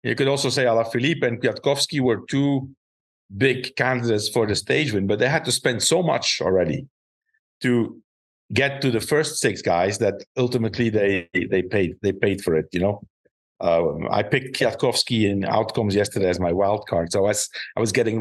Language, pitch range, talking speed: English, 100-140 Hz, 190 wpm